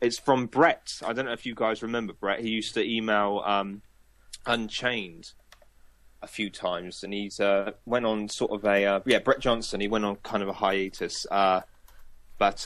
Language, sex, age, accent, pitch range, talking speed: English, male, 20-39, British, 105-130 Hz, 195 wpm